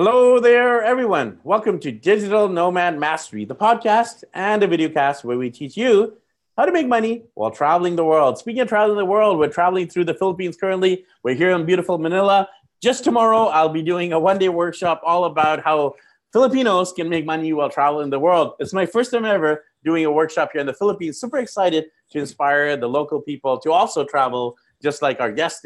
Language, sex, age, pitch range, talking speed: English, male, 30-49, 130-185 Hz, 205 wpm